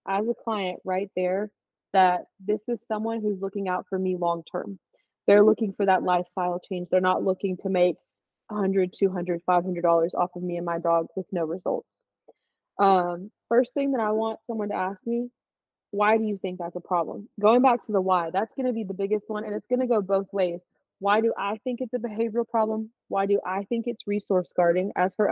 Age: 20-39